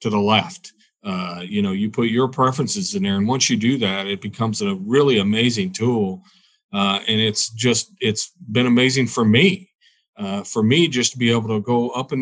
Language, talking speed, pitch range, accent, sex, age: English, 210 wpm, 110-145 Hz, American, male, 40-59